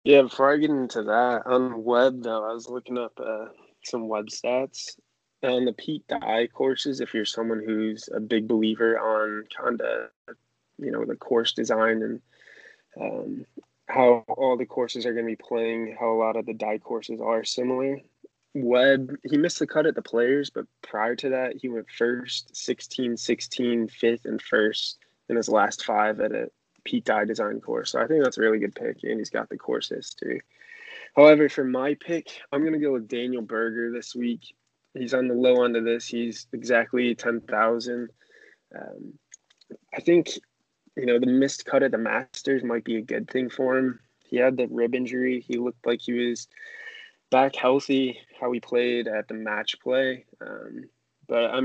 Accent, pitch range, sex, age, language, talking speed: American, 115-130 Hz, male, 20-39, English, 190 wpm